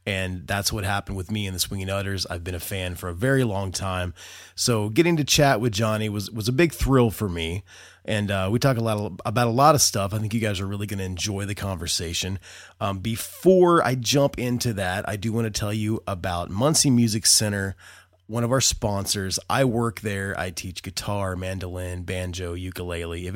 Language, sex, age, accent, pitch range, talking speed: English, male, 30-49, American, 95-120 Hz, 220 wpm